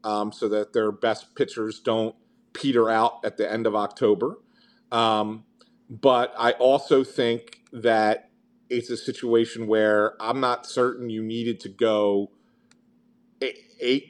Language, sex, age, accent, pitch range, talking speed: English, male, 40-59, American, 115-160 Hz, 140 wpm